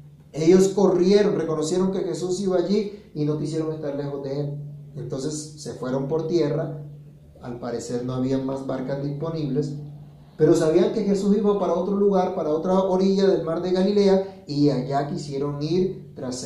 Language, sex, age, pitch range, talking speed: Spanish, male, 30-49, 140-180 Hz, 170 wpm